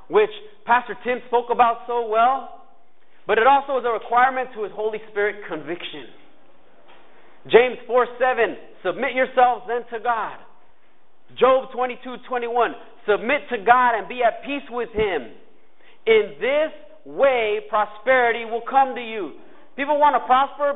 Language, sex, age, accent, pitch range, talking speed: English, male, 30-49, American, 220-280 Hz, 150 wpm